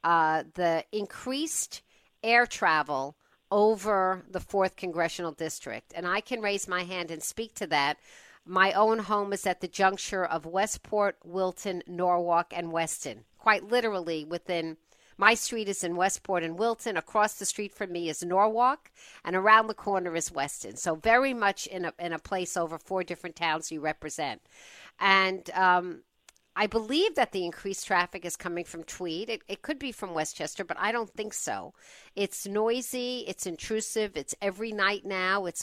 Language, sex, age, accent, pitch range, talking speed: English, female, 50-69, American, 170-210 Hz, 170 wpm